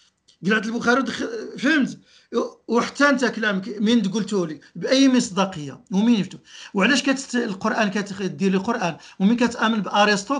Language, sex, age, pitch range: Arabic, male, 50-69, 190-235 Hz